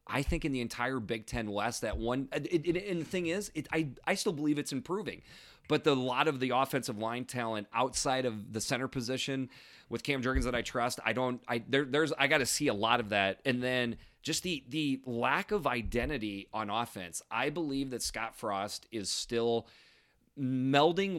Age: 30-49